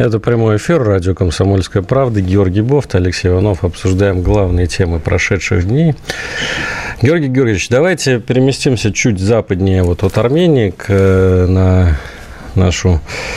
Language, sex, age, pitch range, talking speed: Russian, male, 40-59, 95-125 Hz, 120 wpm